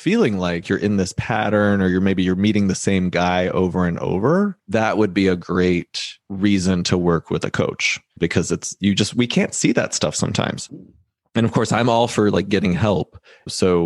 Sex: male